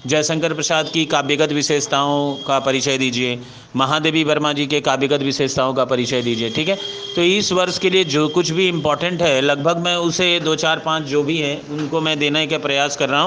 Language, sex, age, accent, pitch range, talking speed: Hindi, male, 40-59, native, 150-185 Hz, 210 wpm